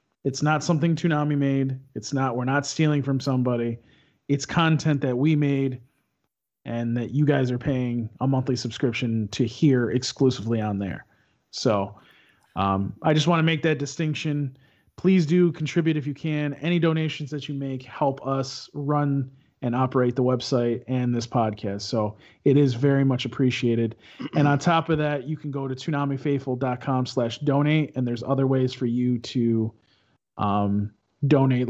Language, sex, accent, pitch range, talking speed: English, male, American, 125-150 Hz, 165 wpm